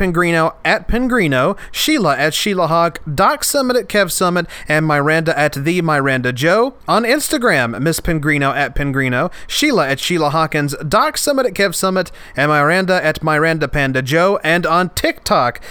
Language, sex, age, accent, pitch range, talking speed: English, male, 30-49, American, 140-190 Hz, 160 wpm